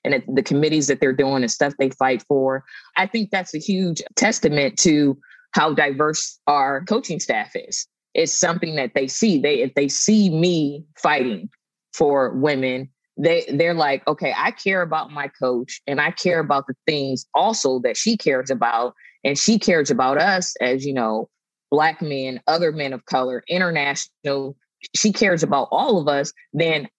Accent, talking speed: American, 175 wpm